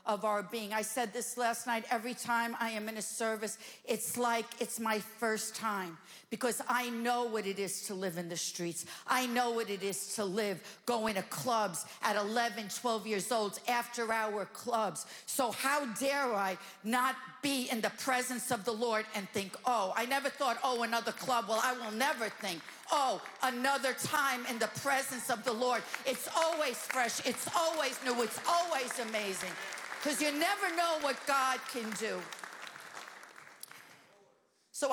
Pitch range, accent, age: 220-280 Hz, American, 50-69